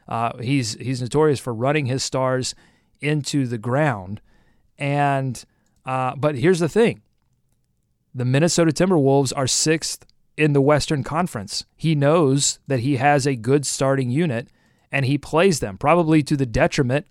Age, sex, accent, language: 30-49, male, American, English